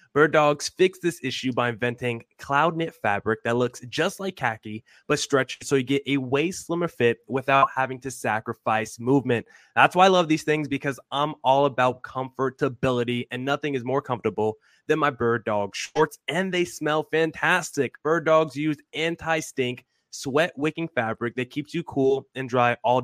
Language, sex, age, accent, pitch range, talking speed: English, male, 20-39, American, 120-160 Hz, 175 wpm